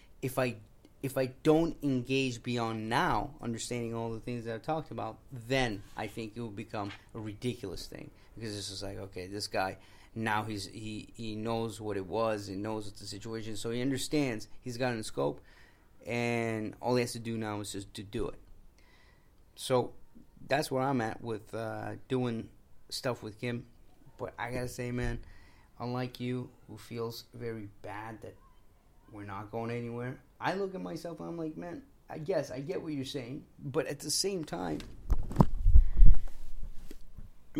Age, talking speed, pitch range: 30-49, 180 wpm, 110-160 Hz